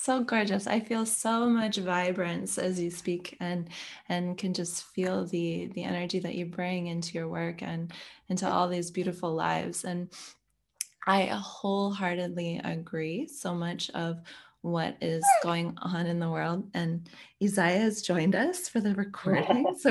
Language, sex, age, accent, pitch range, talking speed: English, female, 20-39, American, 165-200 Hz, 160 wpm